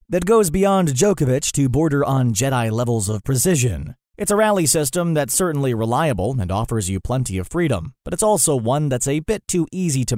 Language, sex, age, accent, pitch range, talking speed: English, male, 30-49, American, 115-155 Hz, 200 wpm